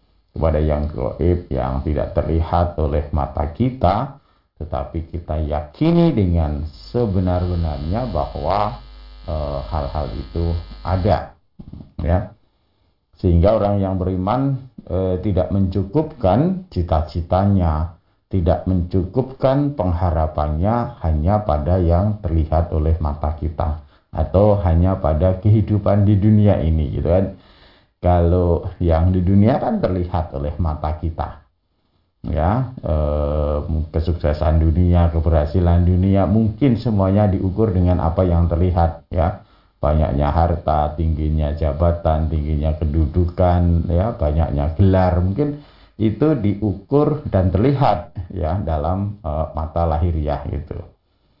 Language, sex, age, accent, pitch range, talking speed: Indonesian, male, 50-69, native, 80-95 Hz, 105 wpm